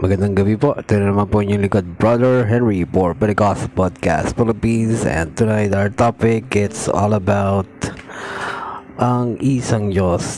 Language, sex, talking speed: Filipino, male, 145 wpm